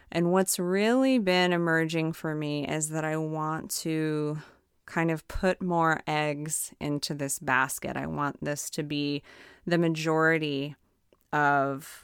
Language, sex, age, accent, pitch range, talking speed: English, female, 20-39, American, 150-175 Hz, 140 wpm